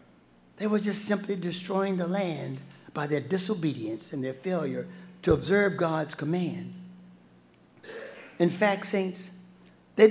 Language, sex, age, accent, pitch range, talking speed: English, male, 60-79, American, 160-220 Hz, 125 wpm